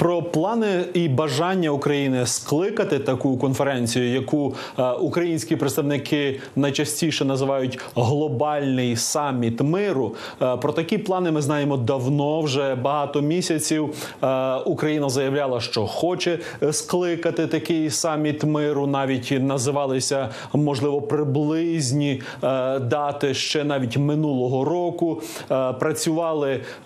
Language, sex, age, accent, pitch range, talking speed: Ukrainian, male, 30-49, native, 135-160 Hz, 95 wpm